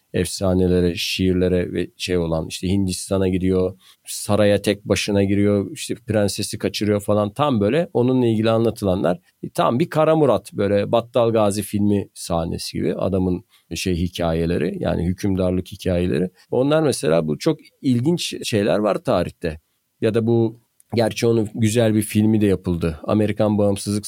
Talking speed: 140 wpm